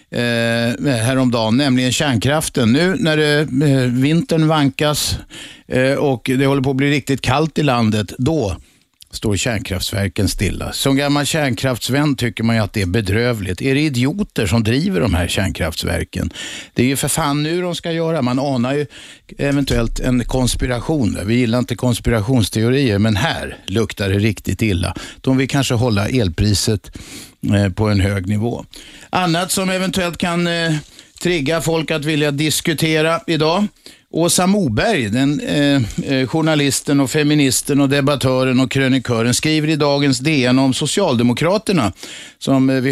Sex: male